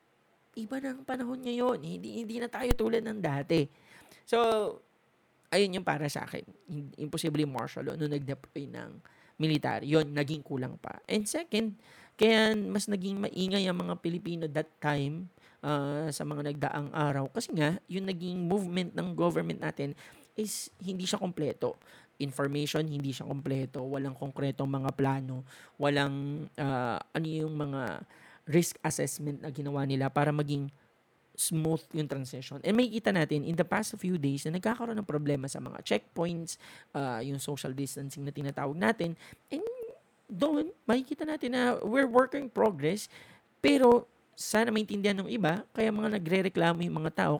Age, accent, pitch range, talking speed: 20-39, Filipino, 145-215 Hz, 155 wpm